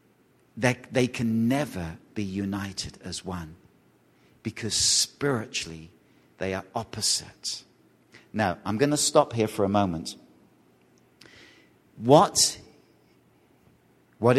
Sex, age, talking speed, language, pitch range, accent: male, 50-69, 100 wpm, English, 95-120 Hz, British